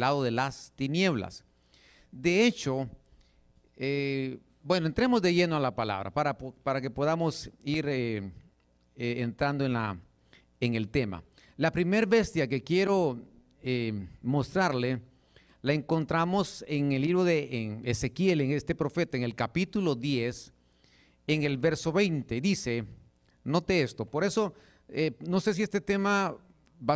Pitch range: 115-160 Hz